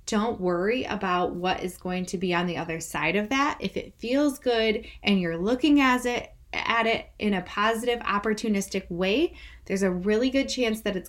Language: English